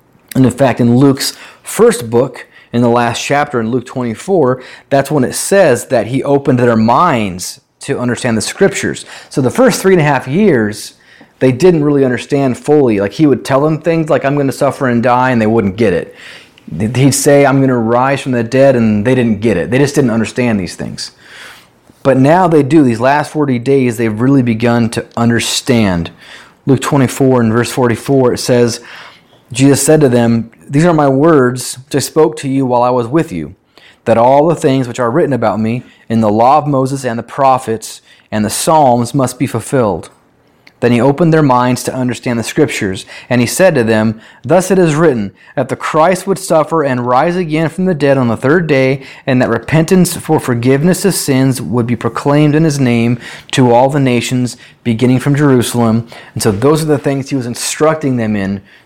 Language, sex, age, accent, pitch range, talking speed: English, male, 30-49, American, 120-145 Hz, 205 wpm